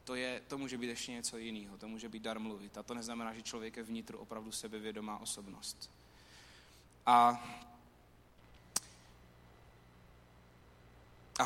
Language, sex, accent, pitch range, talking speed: Czech, male, native, 110-155 Hz, 125 wpm